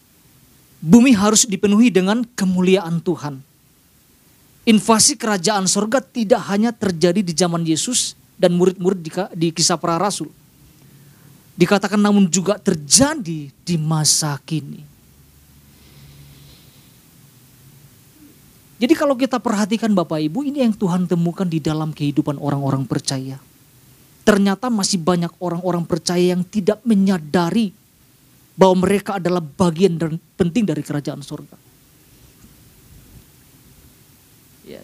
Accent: native